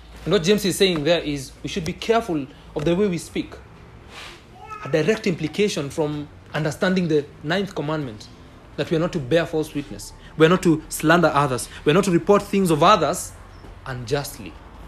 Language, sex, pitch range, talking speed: English, male, 110-185 Hz, 190 wpm